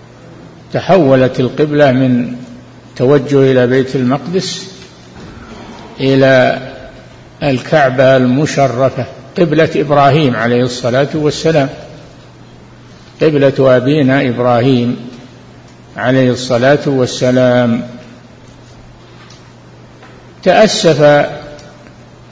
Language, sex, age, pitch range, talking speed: Arabic, male, 60-79, 125-150 Hz, 60 wpm